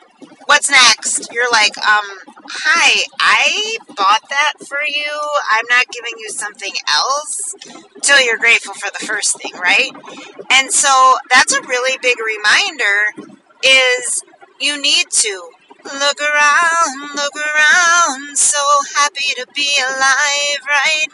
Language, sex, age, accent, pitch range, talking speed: English, female, 30-49, American, 235-295 Hz, 135 wpm